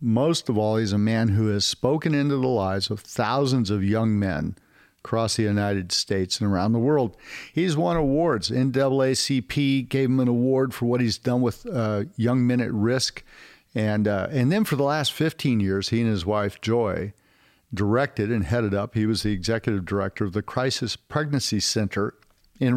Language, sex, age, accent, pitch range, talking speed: English, male, 50-69, American, 105-130 Hz, 190 wpm